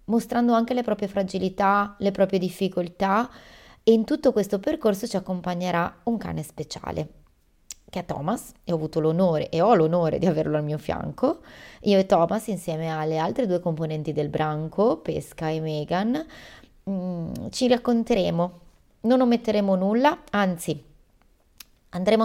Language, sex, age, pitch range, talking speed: Italian, female, 30-49, 175-230 Hz, 145 wpm